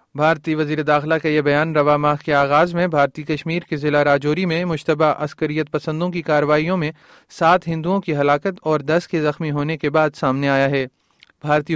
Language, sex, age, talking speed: Urdu, male, 30-49, 195 wpm